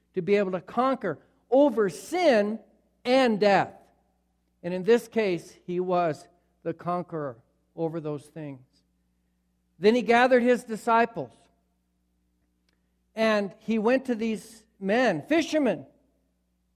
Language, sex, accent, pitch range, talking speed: English, male, American, 155-245 Hz, 115 wpm